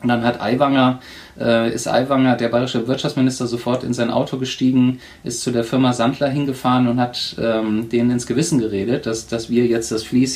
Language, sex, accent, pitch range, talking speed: German, male, German, 120-145 Hz, 195 wpm